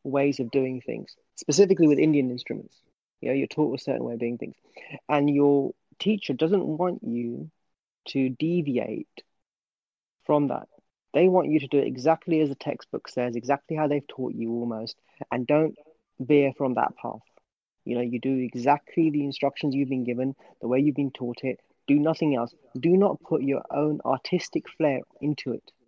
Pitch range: 125-160 Hz